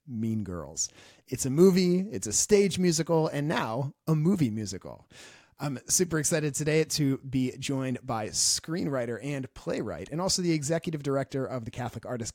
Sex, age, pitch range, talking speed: male, 30-49, 120-170 Hz, 165 wpm